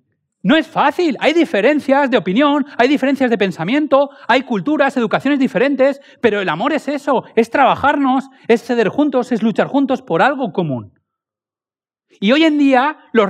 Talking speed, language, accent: 160 wpm, Spanish, Spanish